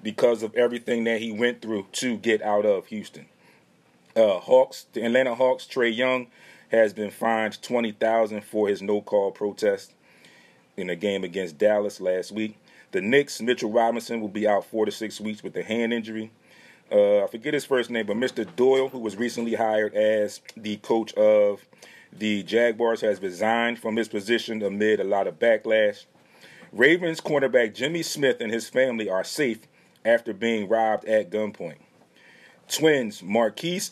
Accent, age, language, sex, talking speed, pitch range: American, 30-49, English, male, 165 wpm, 110-130 Hz